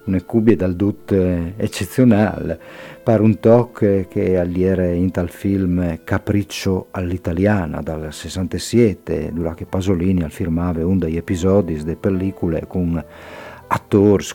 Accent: native